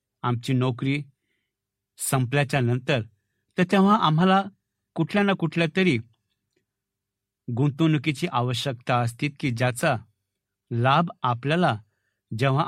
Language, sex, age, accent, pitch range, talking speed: Marathi, male, 60-79, native, 115-170 Hz, 90 wpm